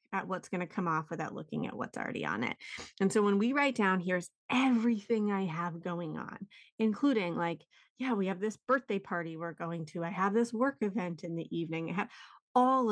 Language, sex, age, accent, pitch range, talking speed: English, female, 30-49, American, 190-235 Hz, 220 wpm